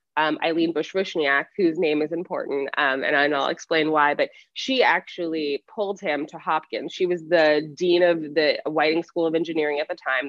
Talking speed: 185 wpm